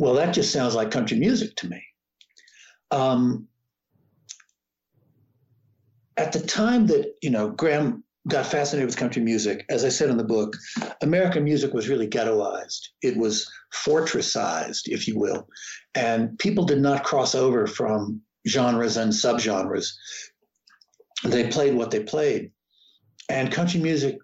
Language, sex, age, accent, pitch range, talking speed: English, male, 60-79, American, 115-145 Hz, 140 wpm